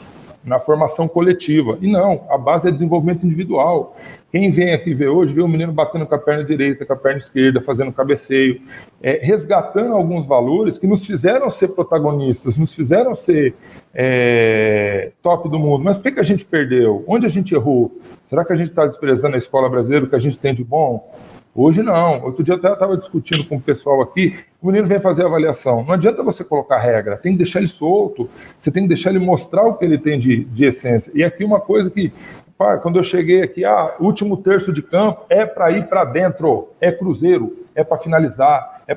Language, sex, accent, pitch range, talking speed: Portuguese, male, Brazilian, 145-195 Hz, 210 wpm